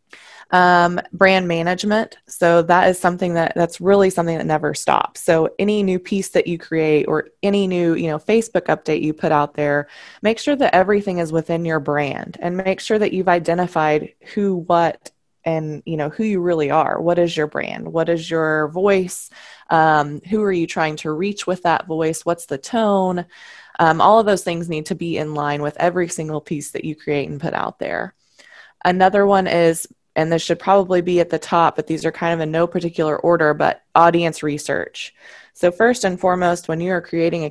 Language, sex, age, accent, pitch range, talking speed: English, female, 20-39, American, 160-185 Hz, 205 wpm